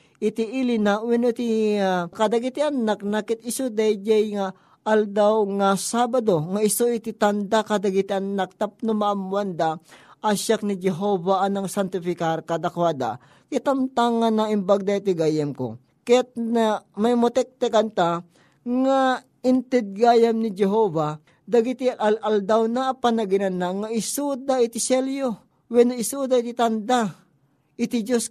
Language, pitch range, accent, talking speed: Filipino, 195-240 Hz, native, 125 wpm